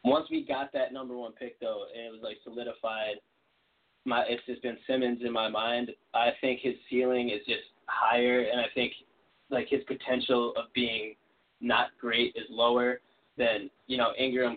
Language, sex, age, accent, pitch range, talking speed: English, male, 20-39, American, 115-130 Hz, 180 wpm